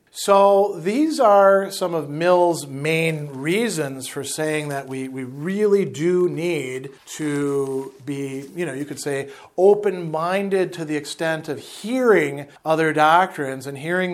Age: 40-59